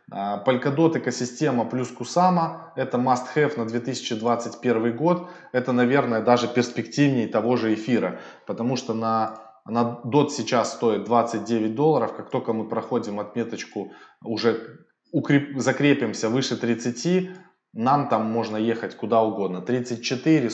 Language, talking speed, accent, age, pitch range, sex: Russian, 125 wpm, native, 20-39, 110-130 Hz, male